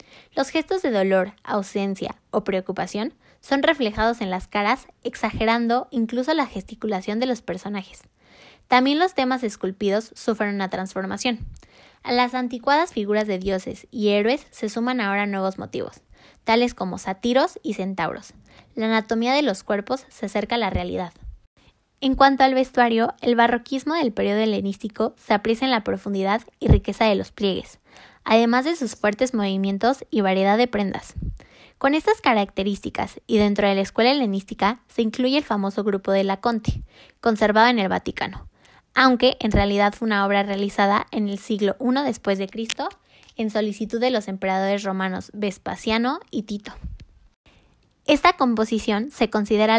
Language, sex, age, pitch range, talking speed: Spanish, female, 10-29, 200-250 Hz, 155 wpm